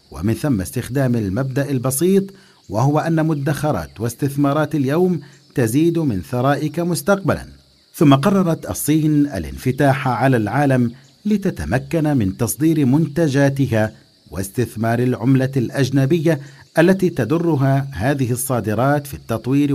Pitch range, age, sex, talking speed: 120-145 Hz, 50-69, male, 100 wpm